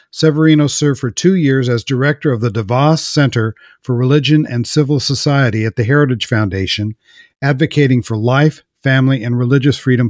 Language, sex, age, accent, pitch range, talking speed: English, male, 50-69, American, 120-145 Hz, 160 wpm